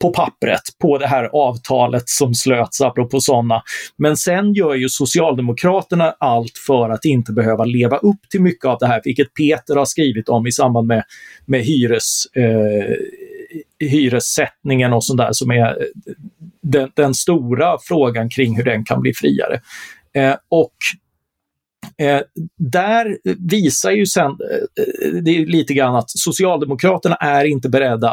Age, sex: 40-59, male